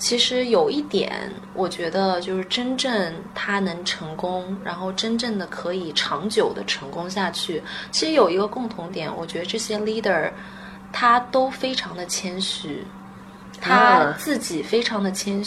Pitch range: 185-215 Hz